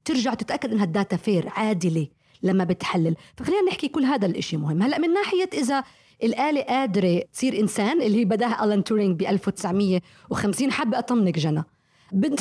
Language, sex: Arabic, female